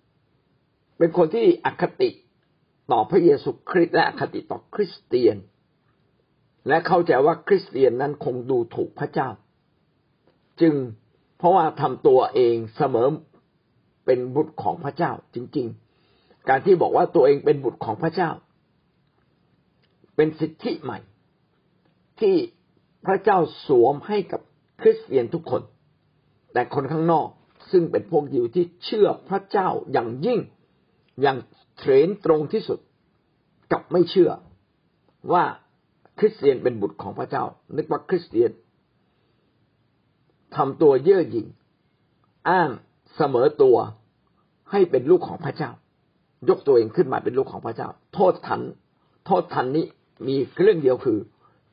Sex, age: male, 60-79